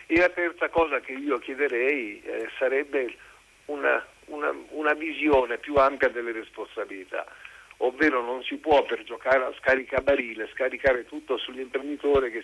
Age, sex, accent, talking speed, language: 50-69, male, native, 135 wpm, Italian